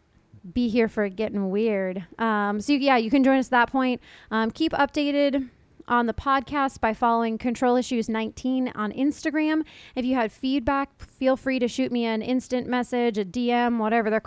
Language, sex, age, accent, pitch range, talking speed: English, female, 30-49, American, 220-265 Hz, 185 wpm